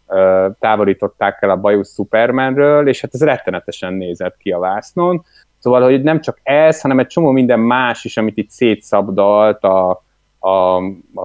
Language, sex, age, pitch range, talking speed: Hungarian, male, 30-49, 105-135 Hz, 155 wpm